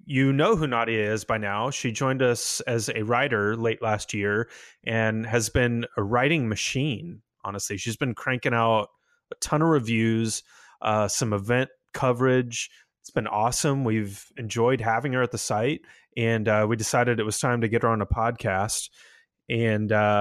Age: 30-49